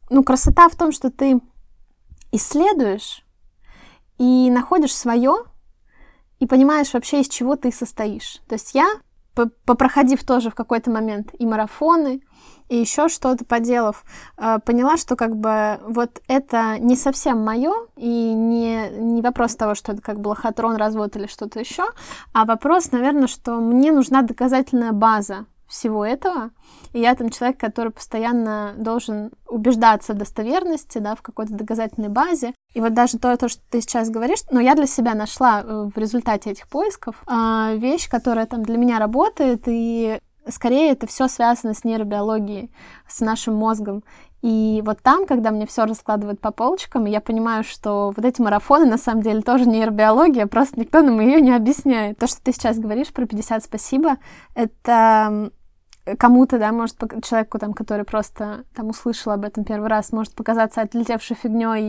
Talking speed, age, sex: 160 wpm, 20-39, female